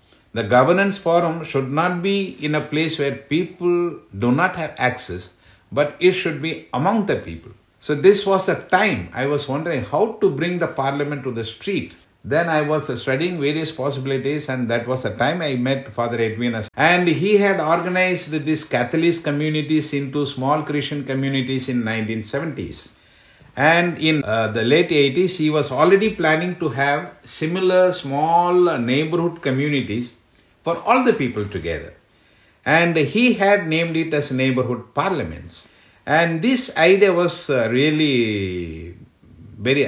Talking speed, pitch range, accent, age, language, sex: 150 wpm, 120-165 Hz, Indian, 60-79, English, male